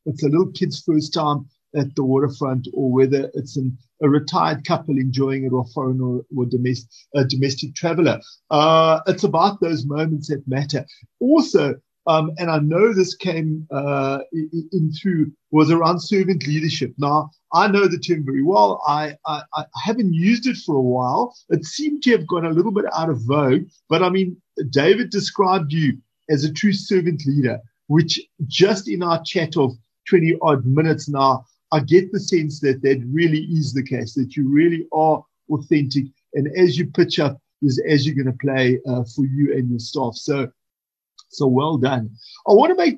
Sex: male